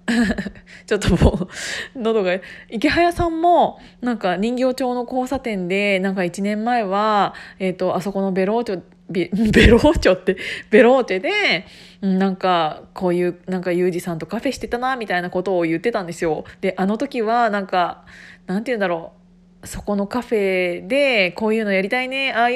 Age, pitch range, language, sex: 20-39, 185-235 Hz, Japanese, female